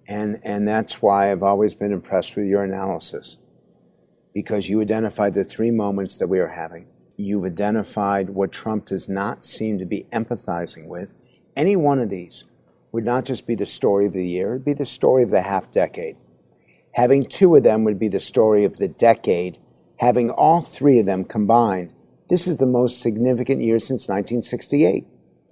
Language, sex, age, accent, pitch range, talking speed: English, male, 50-69, American, 100-120 Hz, 185 wpm